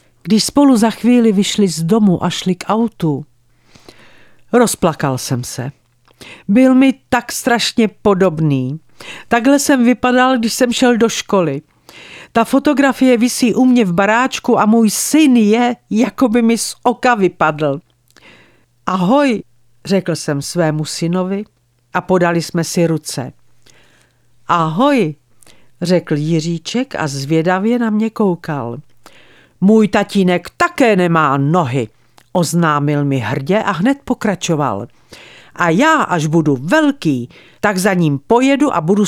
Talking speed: 130 wpm